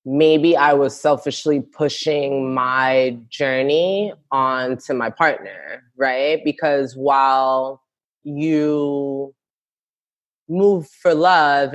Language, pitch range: English, 130-155 Hz